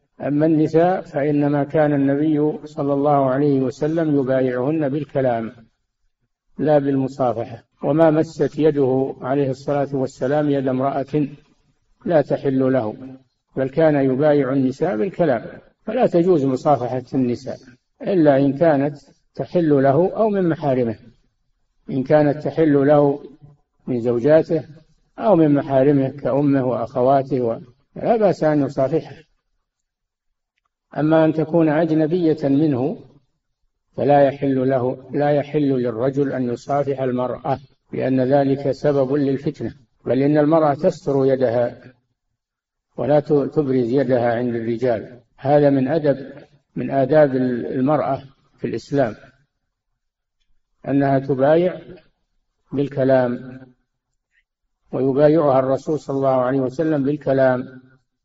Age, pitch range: 60-79, 130-150 Hz